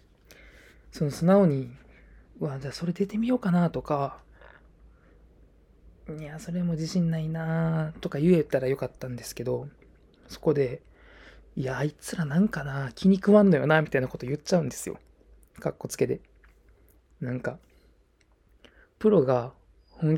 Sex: male